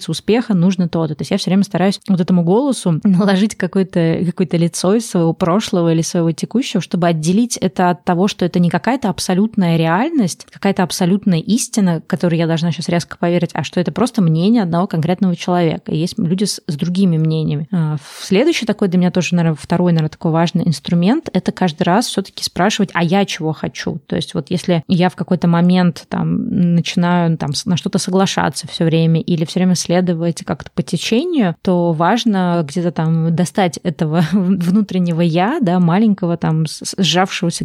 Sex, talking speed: female, 180 wpm